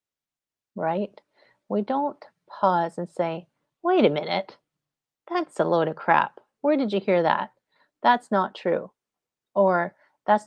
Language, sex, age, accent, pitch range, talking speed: English, female, 40-59, American, 180-215 Hz, 140 wpm